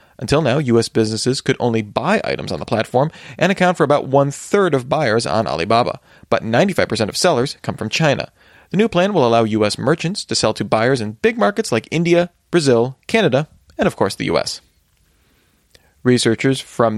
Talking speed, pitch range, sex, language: 185 wpm, 110-155 Hz, male, English